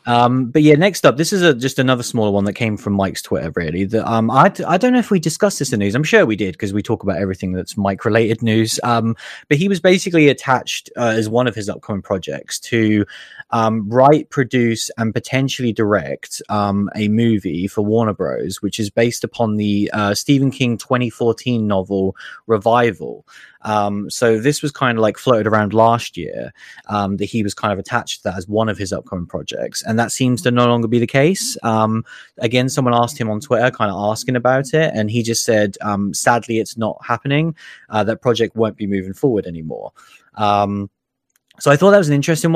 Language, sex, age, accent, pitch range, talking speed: English, male, 20-39, British, 105-130 Hz, 215 wpm